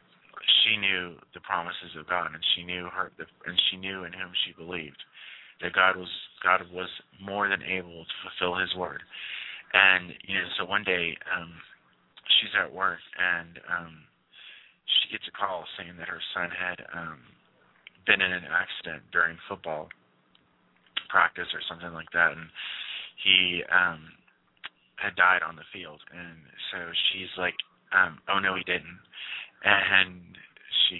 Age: 30-49